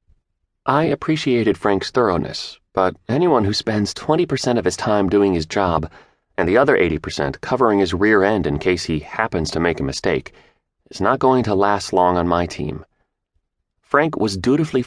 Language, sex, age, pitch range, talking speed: English, male, 30-49, 85-125 Hz, 175 wpm